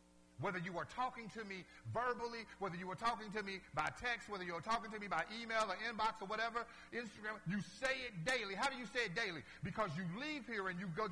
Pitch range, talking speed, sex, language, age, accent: 175-250 Hz, 245 wpm, male, English, 50-69, American